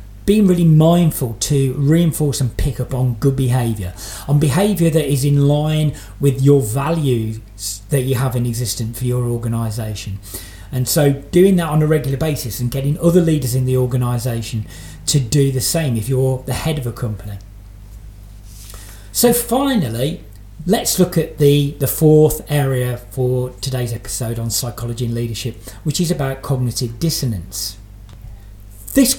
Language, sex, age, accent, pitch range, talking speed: English, male, 40-59, British, 110-150 Hz, 155 wpm